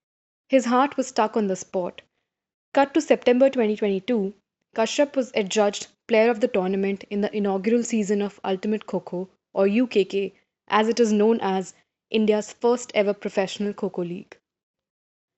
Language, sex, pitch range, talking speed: English, female, 195-240 Hz, 145 wpm